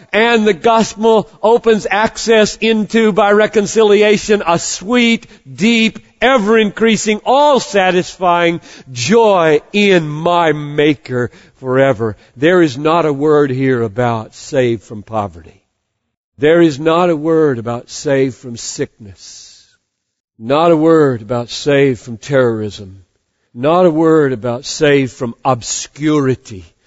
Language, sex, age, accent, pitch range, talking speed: English, male, 50-69, American, 120-180 Hz, 115 wpm